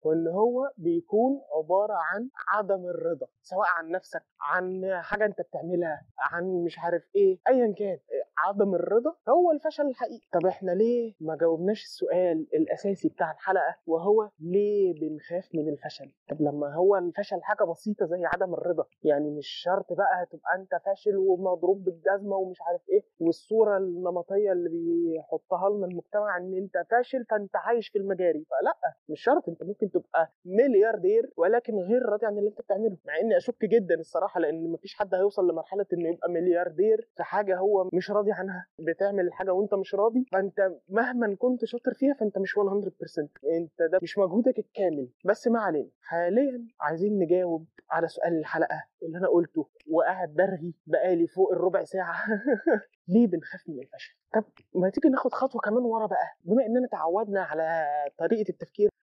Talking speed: 165 wpm